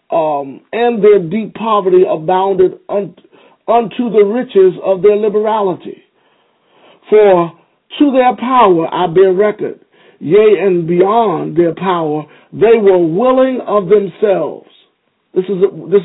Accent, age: American, 50-69